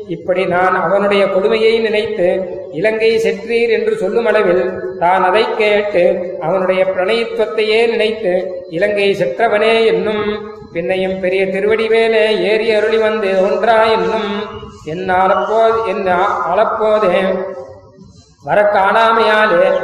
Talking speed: 95 wpm